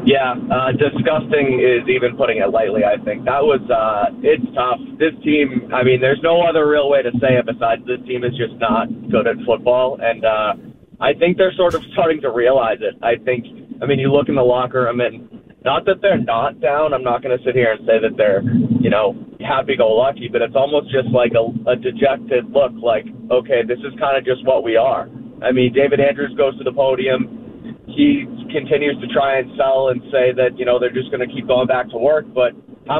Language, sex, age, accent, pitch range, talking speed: English, male, 30-49, American, 125-145 Hz, 235 wpm